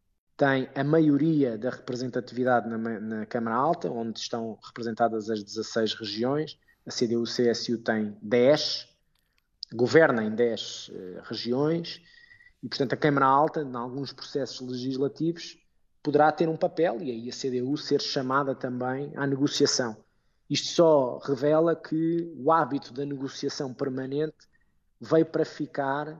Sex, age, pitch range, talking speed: male, 20-39, 120-145 Hz, 135 wpm